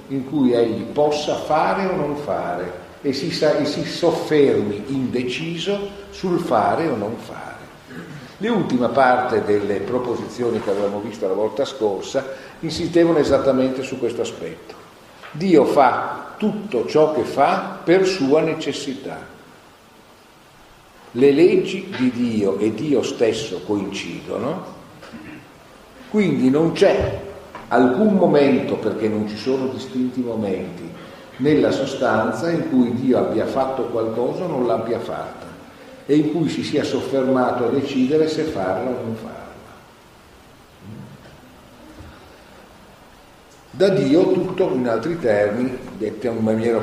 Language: Italian